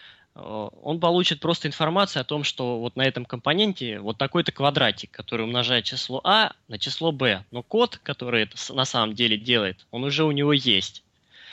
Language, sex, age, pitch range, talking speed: Russian, male, 20-39, 115-150 Hz, 175 wpm